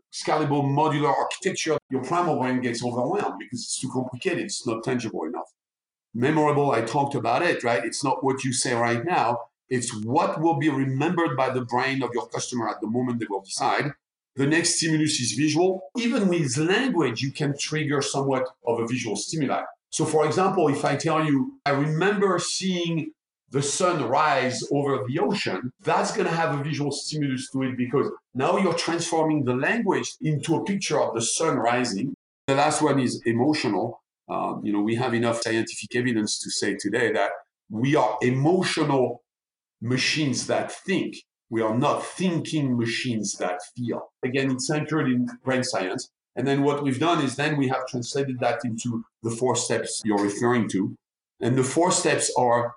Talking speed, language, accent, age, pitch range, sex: 180 wpm, English, French, 50-69, 125-155 Hz, male